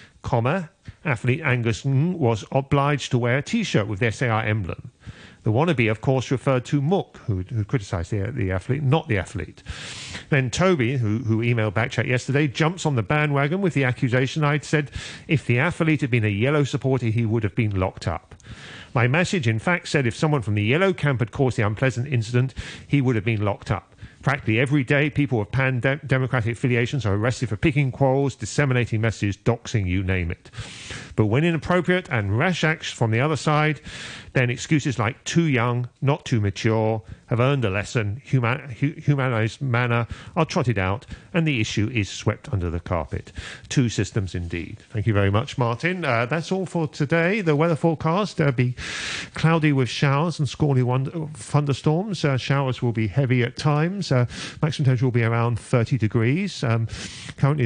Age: 40-59